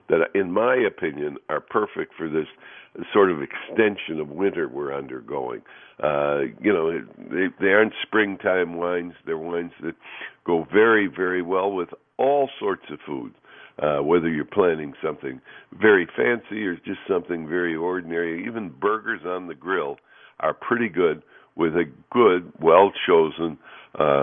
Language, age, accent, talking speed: English, 60-79, American, 145 wpm